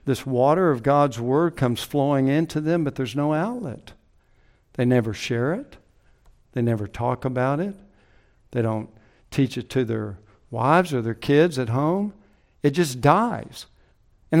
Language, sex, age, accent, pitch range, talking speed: English, male, 60-79, American, 130-180 Hz, 160 wpm